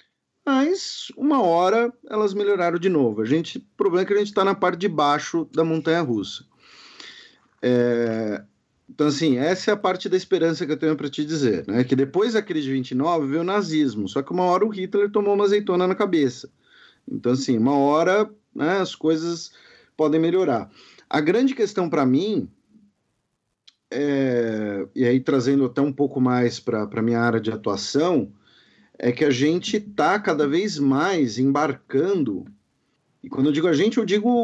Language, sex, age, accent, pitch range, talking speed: Portuguese, male, 40-59, Brazilian, 130-200 Hz, 180 wpm